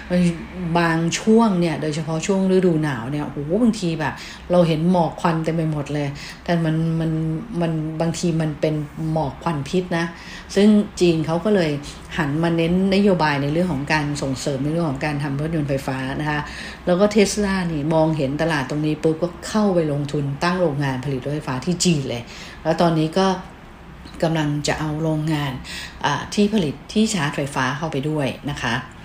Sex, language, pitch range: female, English, 150-180 Hz